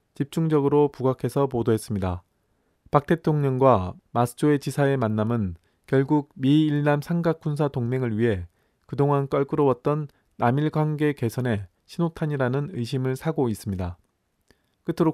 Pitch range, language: 120-150 Hz, Korean